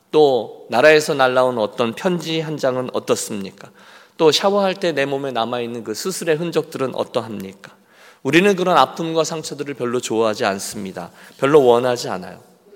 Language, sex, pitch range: Korean, male, 115-165 Hz